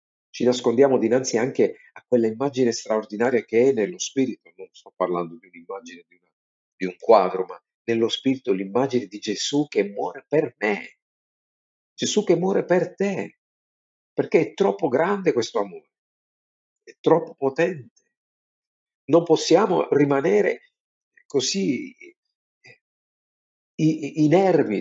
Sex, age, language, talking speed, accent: male, 50-69, Italian, 120 wpm, native